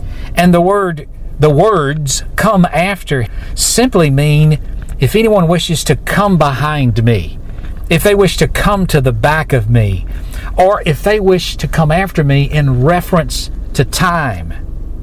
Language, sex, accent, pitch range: English, male, American, 125-175 Hz